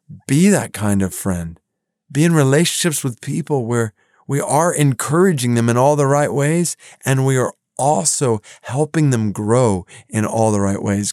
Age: 40-59